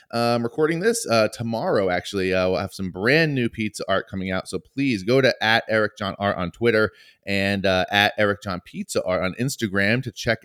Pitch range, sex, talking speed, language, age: 90-110 Hz, male, 225 wpm, English, 20-39